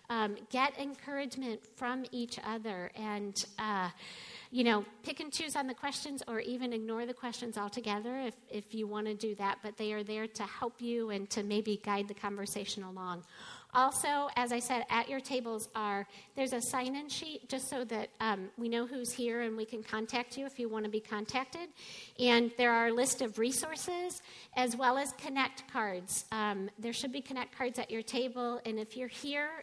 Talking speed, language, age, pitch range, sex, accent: 200 wpm, English, 50-69, 215-255 Hz, female, American